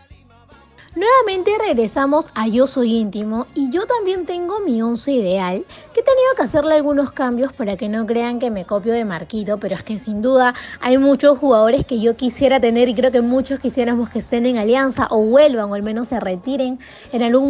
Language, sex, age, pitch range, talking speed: Spanish, female, 20-39, 220-300 Hz, 200 wpm